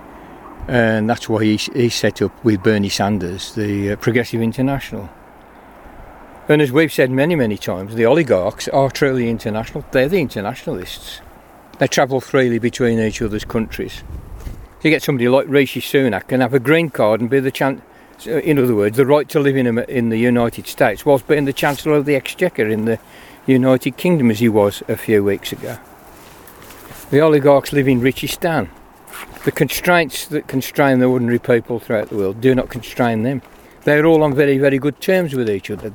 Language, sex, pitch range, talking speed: English, male, 115-145 Hz, 185 wpm